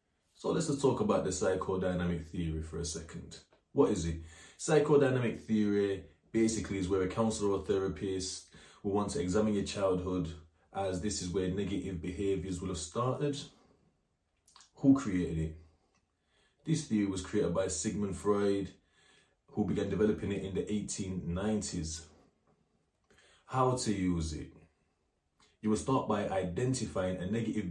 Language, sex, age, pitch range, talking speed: English, male, 20-39, 85-105 Hz, 145 wpm